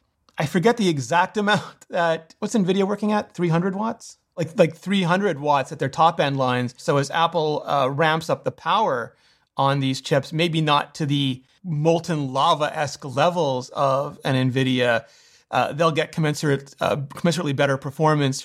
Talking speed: 165 wpm